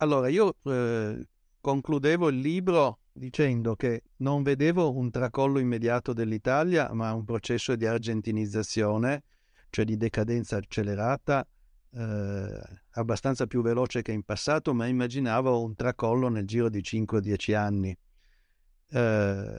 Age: 60-79